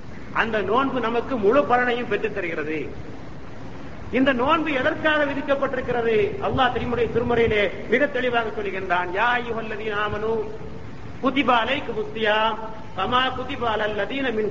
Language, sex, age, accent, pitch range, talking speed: Tamil, male, 50-69, native, 220-270 Hz, 65 wpm